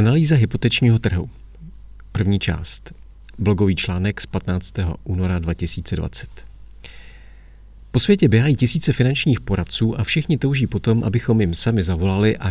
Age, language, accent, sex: 40-59, Czech, native, male